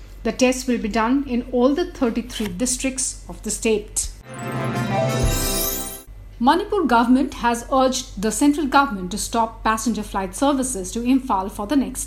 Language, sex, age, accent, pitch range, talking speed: English, female, 60-79, Indian, 210-270 Hz, 150 wpm